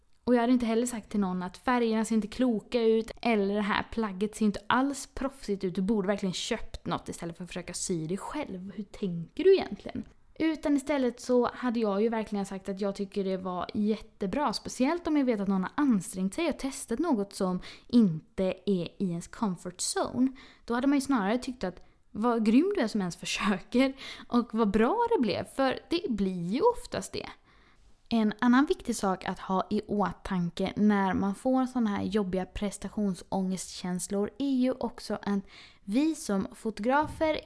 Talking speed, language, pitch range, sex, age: 190 wpm, Swedish, 200-260 Hz, female, 20-39